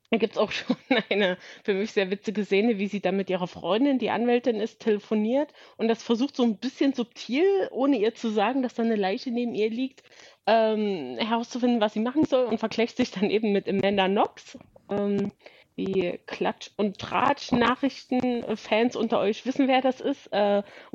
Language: German